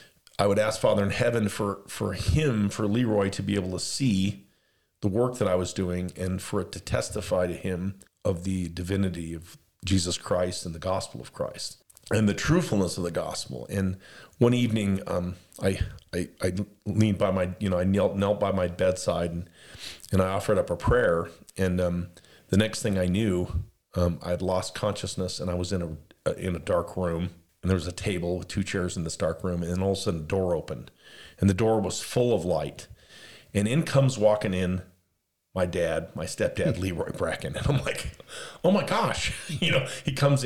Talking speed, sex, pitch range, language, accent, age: 210 wpm, male, 90-110 Hz, English, American, 40-59